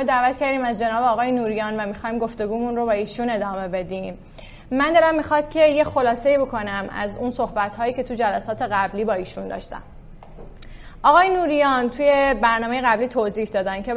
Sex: female